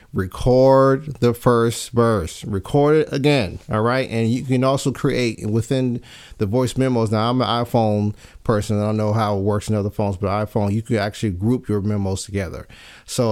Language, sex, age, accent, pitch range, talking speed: English, male, 40-59, American, 110-135 Hz, 190 wpm